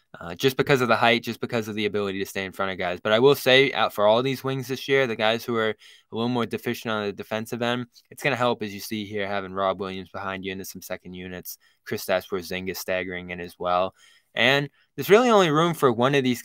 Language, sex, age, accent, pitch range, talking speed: English, male, 10-29, American, 90-120 Hz, 270 wpm